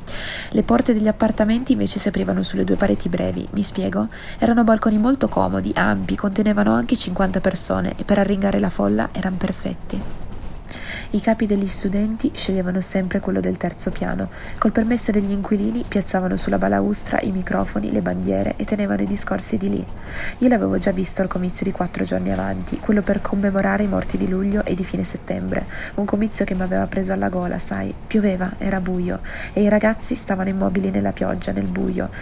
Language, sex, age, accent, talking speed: Italian, female, 20-39, native, 185 wpm